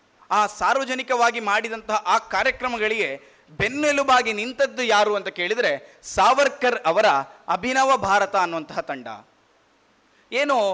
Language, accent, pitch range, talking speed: Kannada, native, 215-275 Hz, 95 wpm